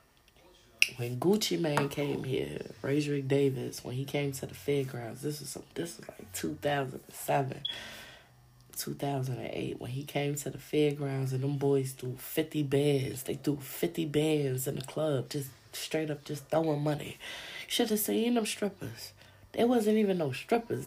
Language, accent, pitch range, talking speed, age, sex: English, American, 130-150 Hz, 160 wpm, 20-39, female